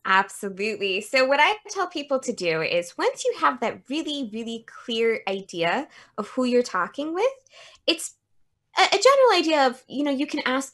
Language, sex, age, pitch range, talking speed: English, female, 20-39, 185-270 Hz, 185 wpm